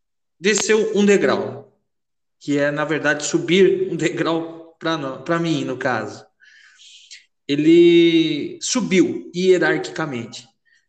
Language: Portuguese